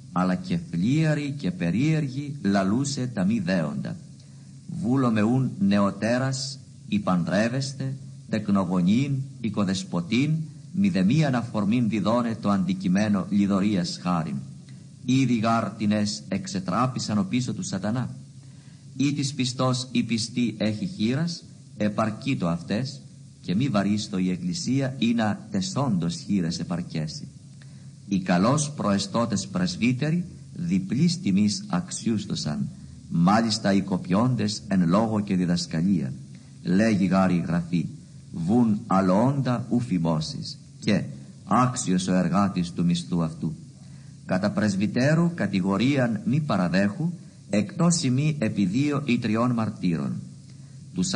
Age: 50-69